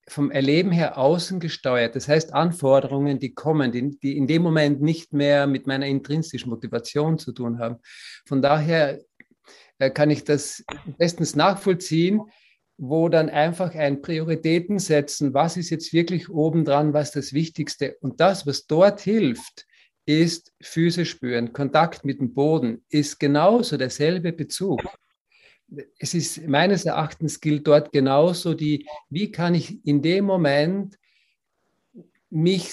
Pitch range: 135-165 Hz